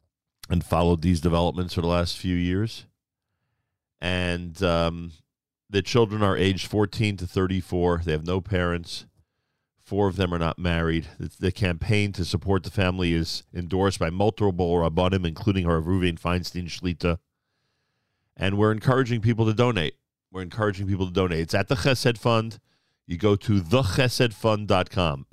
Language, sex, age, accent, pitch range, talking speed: English, male, 40-59, American, 85-115 Hz, 155 wpm